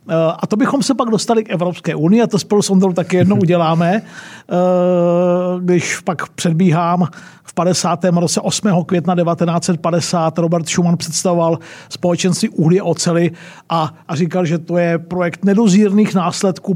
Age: 50-69